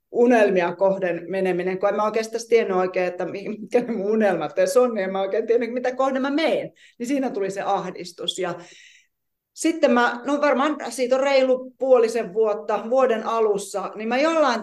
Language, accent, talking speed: Finnish, native, 165 wpm